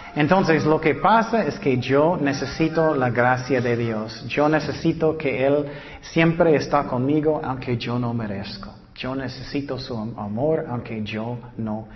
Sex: male